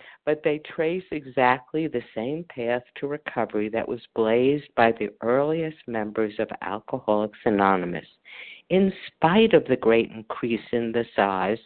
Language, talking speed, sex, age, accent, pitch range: English, 145 wpm, female, 50-69, American, 115-155 Hz